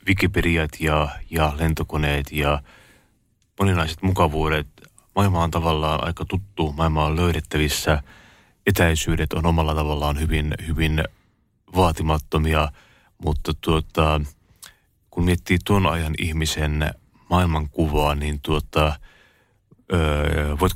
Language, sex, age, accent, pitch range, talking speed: Finnish, male, 30-49, native, 75-90 Hz, 100 wpm